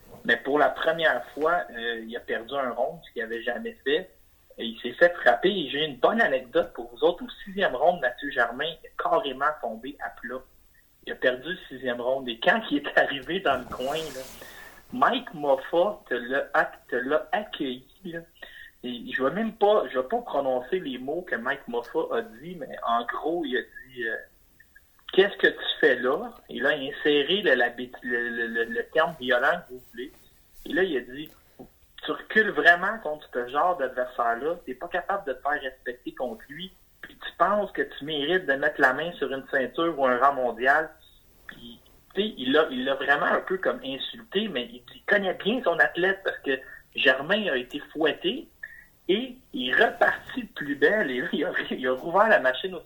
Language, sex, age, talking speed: French, male, 50-69, 205 wpm